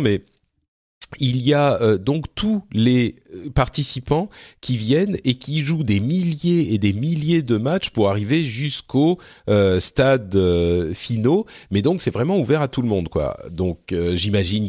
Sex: male